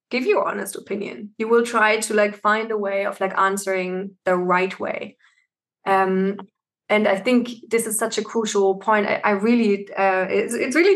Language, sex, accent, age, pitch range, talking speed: German, female, German, 20-39, 195-225 Hz, 190 wpm